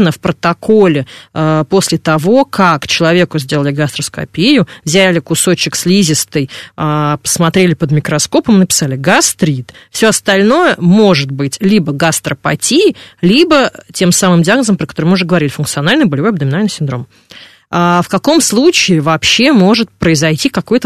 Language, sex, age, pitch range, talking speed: Russian, female, 20-39, 160-200 Hz, 120 wpm